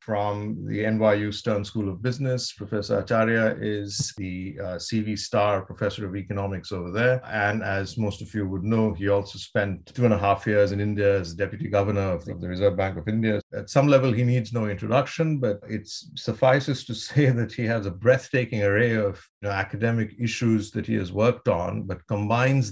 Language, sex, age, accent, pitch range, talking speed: English, male, 50-69, Indian, 100-125 Hz, 195 wpm